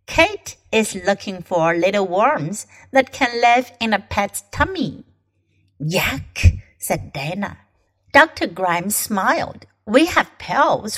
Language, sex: Chinese, female